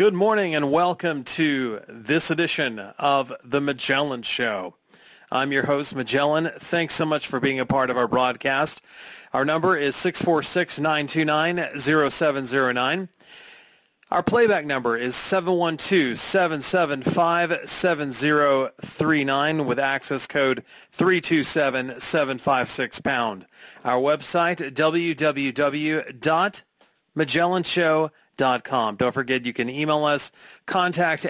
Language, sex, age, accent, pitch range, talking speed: English, male, 40-59, American, 135-170 Hz, 95 wpm